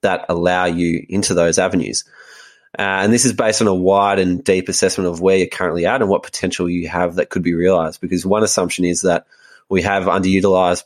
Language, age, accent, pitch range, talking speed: English, 20-39, Australian, 90-100 Hz, 215 wpm